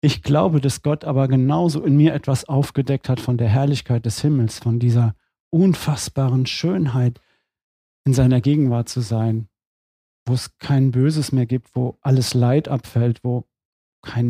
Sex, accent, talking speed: male, German, 155 wpm